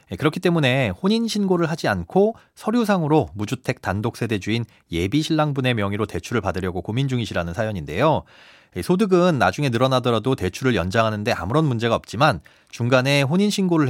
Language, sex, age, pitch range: Korean, male, 30-49, 110-160 Hz